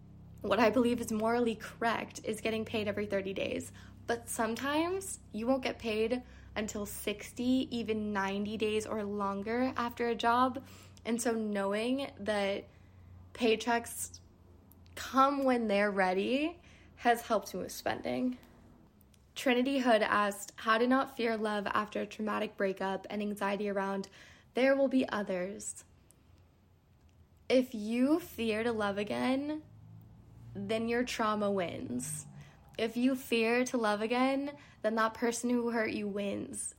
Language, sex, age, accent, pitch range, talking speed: English, female, 20-39, American, 205-245 Hz, 135 wpm